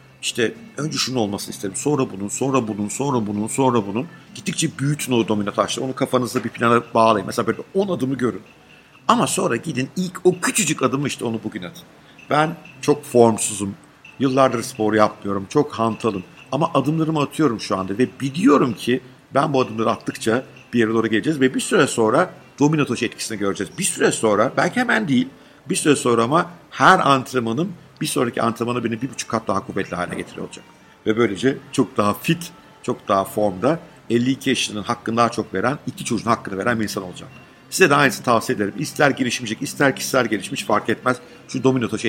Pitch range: 110-140 Hz